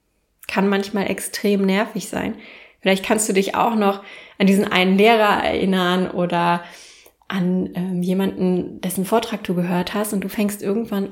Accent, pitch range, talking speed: German, 195-245 Hz, 155 wpm